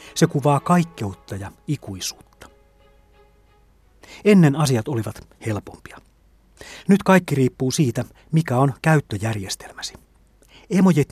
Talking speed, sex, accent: 90 wpm, male, native